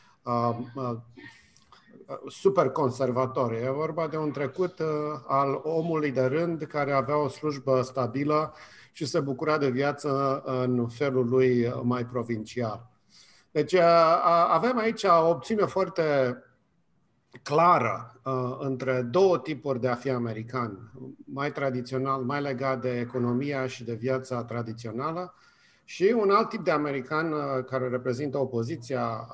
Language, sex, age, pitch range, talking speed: Romanian, male, 50-69, 125-160 Hz, 120 wpm